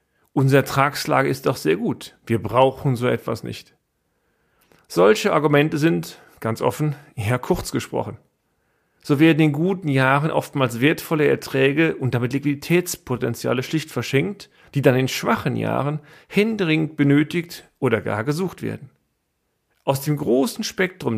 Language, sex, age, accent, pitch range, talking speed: German, male, 40-59, German, 125-155 Hz, 135 wpm